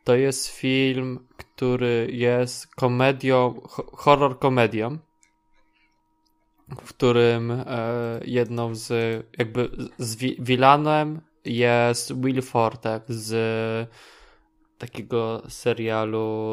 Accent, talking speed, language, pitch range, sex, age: native, 75 wpm, Polish, 120-135 Hz, male, 20-39